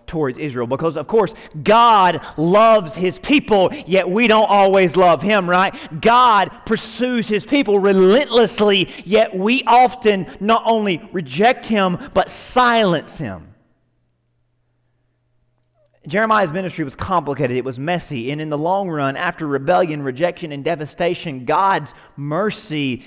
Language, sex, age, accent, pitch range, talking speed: English, male, 30-49, American, 140-215 Hz, 130 wpm